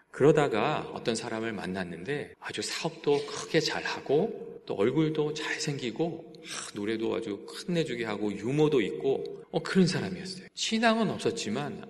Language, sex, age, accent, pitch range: Korean, male, 40-59, native, 115-185 Hz